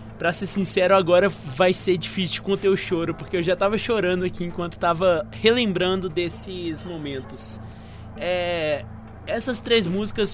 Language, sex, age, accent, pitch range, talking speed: Portuguese, male, 20-39, Brazilian, 160-200 Hz, 155 wpm